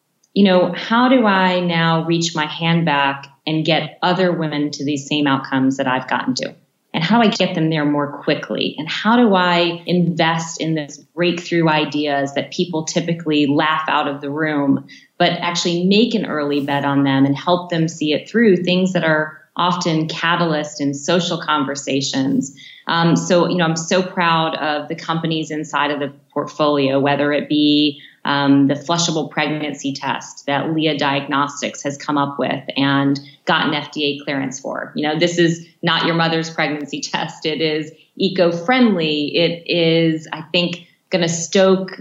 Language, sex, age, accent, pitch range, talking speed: English, female, 30-49, American, 150-175 Hz, 175 wpm